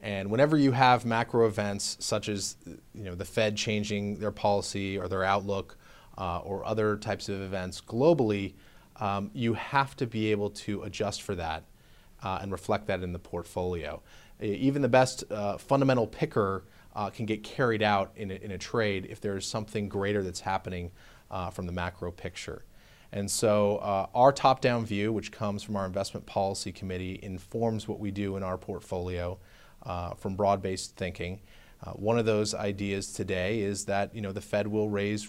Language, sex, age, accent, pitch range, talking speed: English, male, 30-49, American, 95-110 Hz, 180 wpm